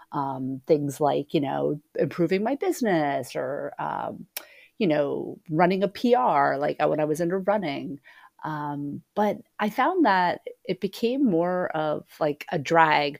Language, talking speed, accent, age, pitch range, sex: English, 150 wpm, American, 30-49, 145-175 Hz, female